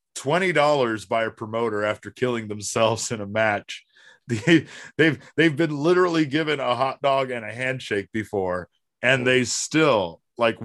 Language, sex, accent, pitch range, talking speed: English, male, American, 105-135 Hz, 140 wpm